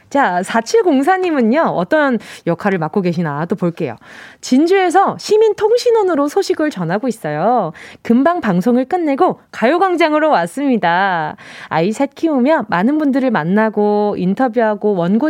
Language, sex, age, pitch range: Korean, female, 20-39, 215-325 Hz